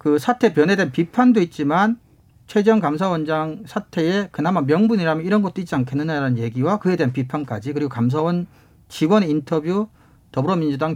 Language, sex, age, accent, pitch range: Korean, male, 40-59, native, 135-190 Hz